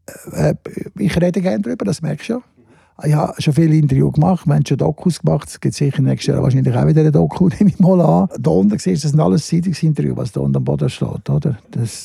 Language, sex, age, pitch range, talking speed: German, male, 60-79, 140-175 Hz, 230 wpm